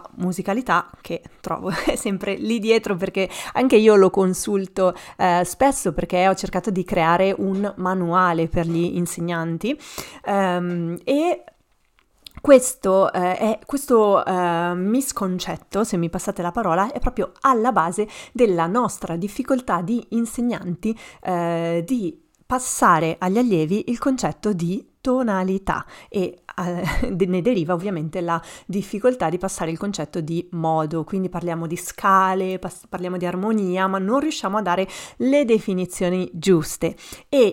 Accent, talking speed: native, 130 wpm